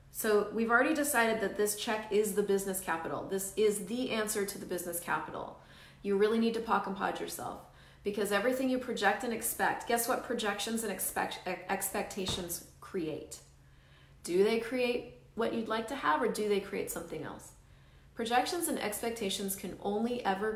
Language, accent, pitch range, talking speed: English, American, 190-235 Hz, 175 wpm